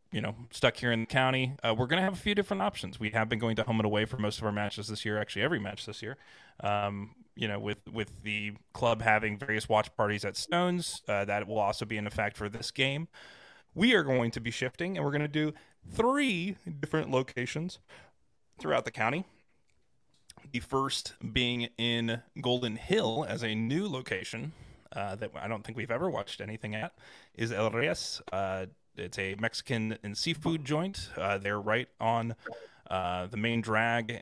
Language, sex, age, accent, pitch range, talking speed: English, male, 20-39, American, 105-130 Hz, 200 wpm